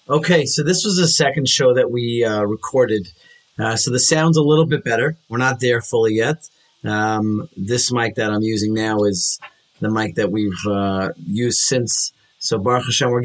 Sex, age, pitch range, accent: male, 30-49, 105-130 Hz, American